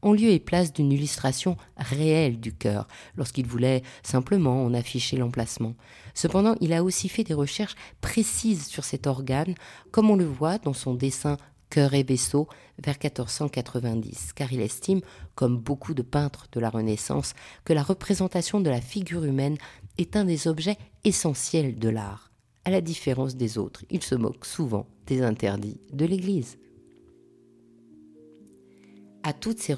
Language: French